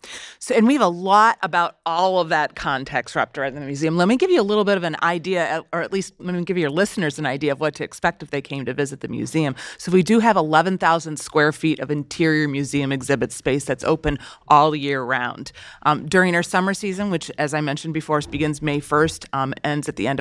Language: English